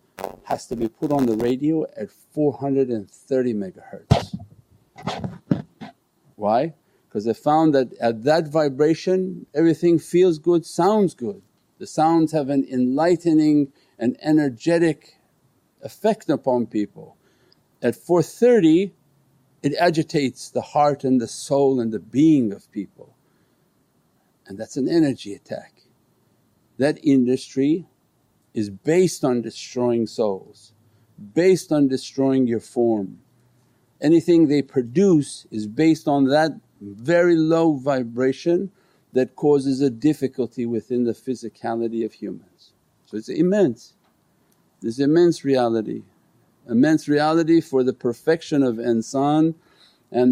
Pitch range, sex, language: 125-160 Hz, male, English